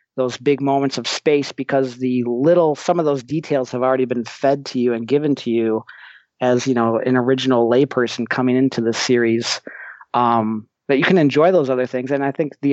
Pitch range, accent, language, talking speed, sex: 120-145 Hz, American, English, 205 wpm, male